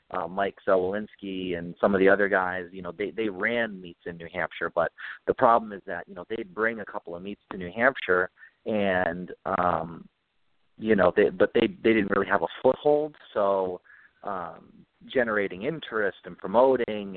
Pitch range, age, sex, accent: 90-105 Hz, 30-49, male, American